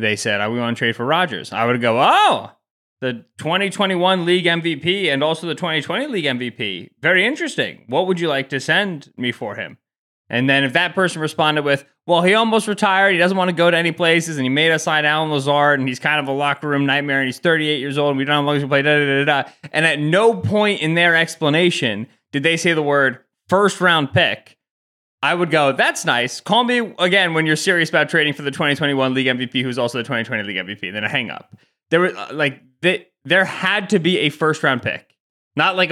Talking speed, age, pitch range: 230 wpm, 20-39, 135-175 Hz